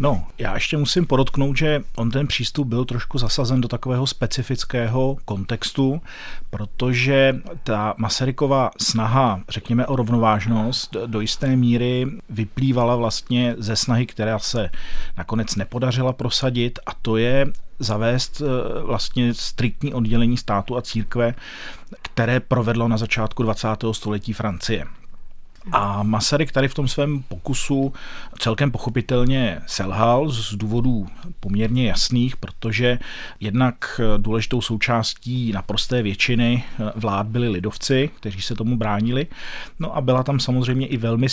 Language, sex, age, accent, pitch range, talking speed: Czech, male, 40-59, native, 115-135 Hz, 125 wpm